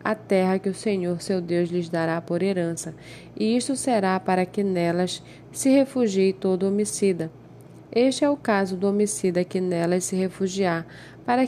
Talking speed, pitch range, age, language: 165 wpm, 180-220 Hz, 10-29, Portuguese